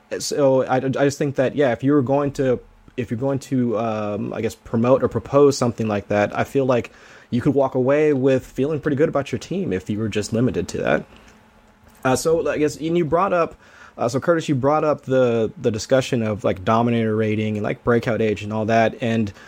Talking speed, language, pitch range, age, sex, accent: 230 wpm, English, 115-135 Hz, 20-39, male, American